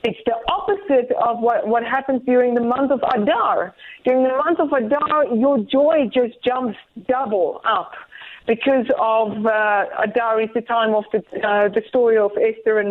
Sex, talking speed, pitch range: female, 170 wpm, 215-270 Hz